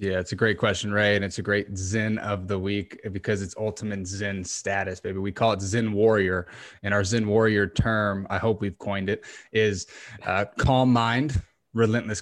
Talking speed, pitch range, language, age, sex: 195 wpm, 100-115 Hz, English, 20-39, male